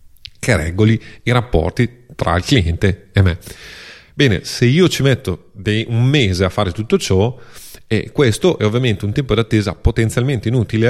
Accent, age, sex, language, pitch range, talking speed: native, 30-49, male, Italian, 95-125 Hz, 170 wpm